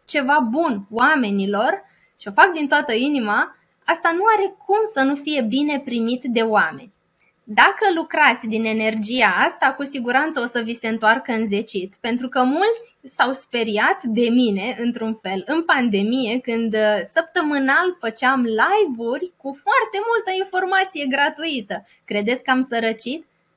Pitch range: 225-290 Hz